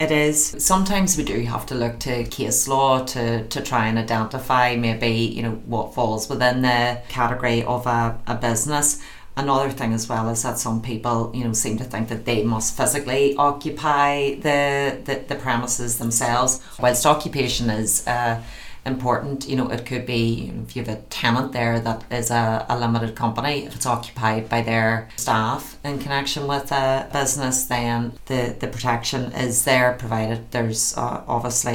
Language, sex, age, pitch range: English, female, 30-49, 115-130 Hz